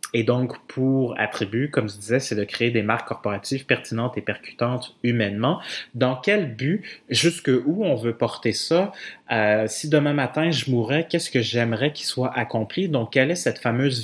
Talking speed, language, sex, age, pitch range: 185 wpm, French, male, 30-49, 110-135 Hz